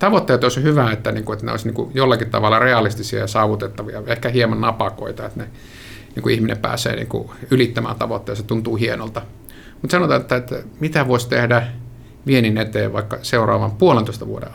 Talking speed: 145 wpm